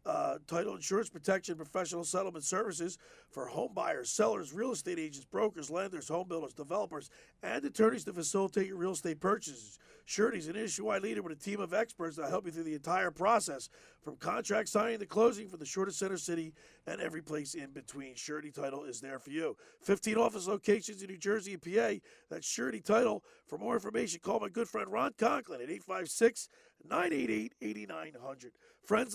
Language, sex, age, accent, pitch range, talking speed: English, male, 50-69, American, 155-220 Hz, 185 wpm